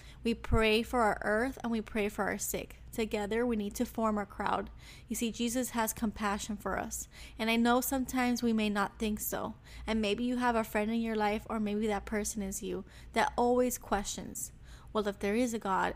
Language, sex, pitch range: English, female, 205-235 Hz